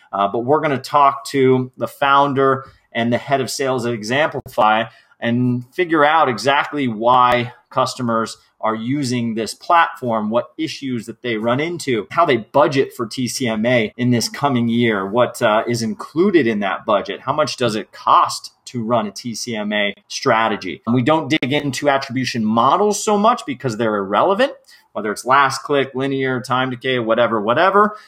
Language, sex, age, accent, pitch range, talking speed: English, male, 30-49, American, 115-140 Hz, 170 wpm